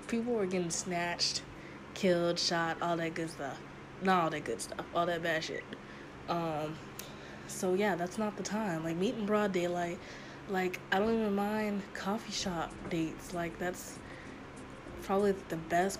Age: 20-39